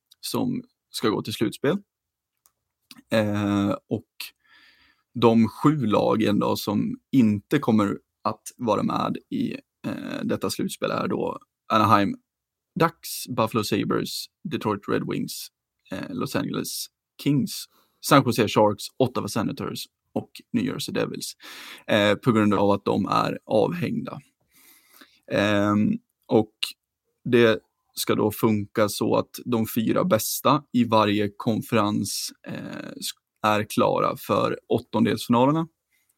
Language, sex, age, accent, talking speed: Swedish, male, 20-39, native, 115 wpm